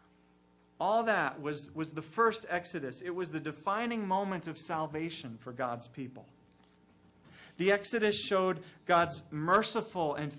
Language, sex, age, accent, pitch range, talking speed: English, male, 40-59, American, 150-210 Hz, 135 wpm